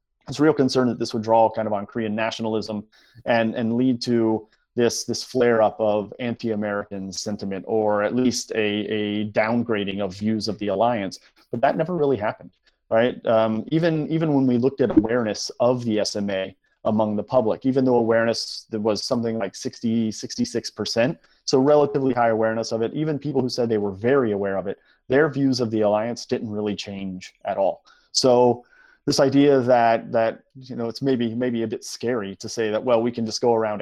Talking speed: 195 wpm